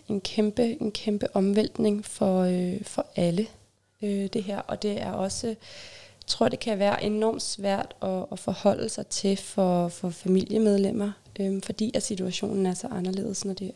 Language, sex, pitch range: Danish, female, 180-210 Hz